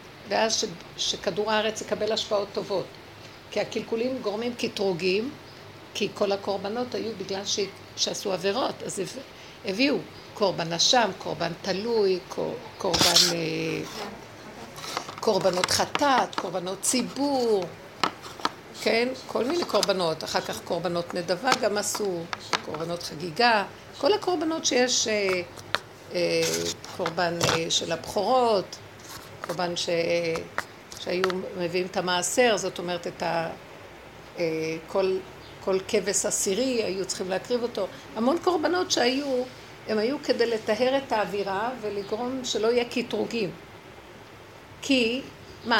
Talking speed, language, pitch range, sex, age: 105 wpm, Hebrew, 180-235 Hz, female, 60-79